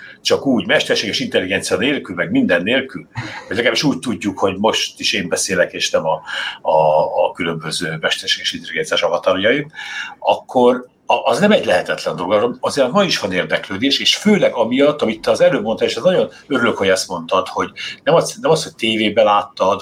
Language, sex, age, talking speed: Hungarian, male, 60-79, 190 wpm